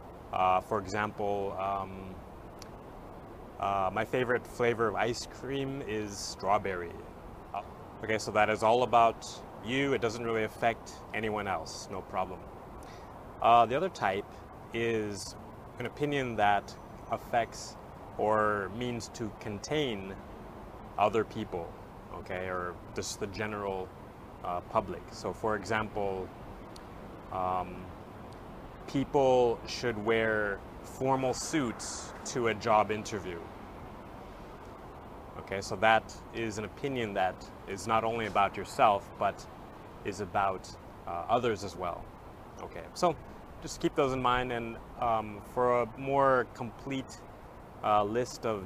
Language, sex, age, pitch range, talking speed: English, male, 30-49, 100-120 Hz, 120 wpm